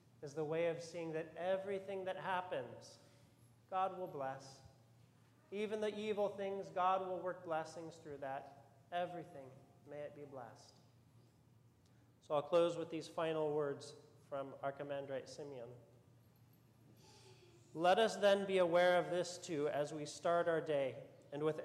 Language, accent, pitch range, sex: English, American, 135-180 Hz, male